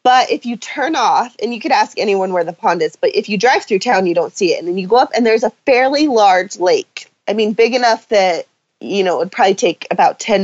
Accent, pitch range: American, 185-255 Hz